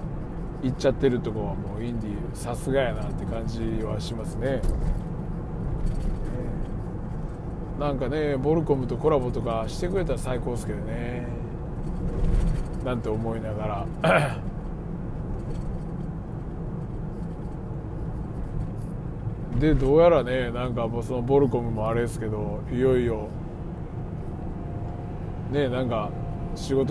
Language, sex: Japanese, male